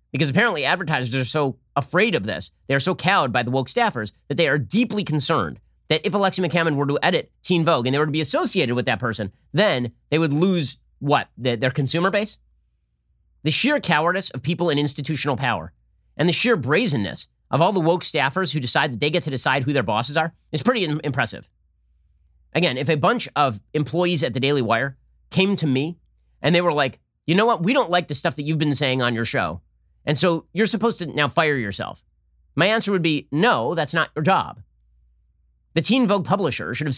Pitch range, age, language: 115-180 Hz, 30-49, English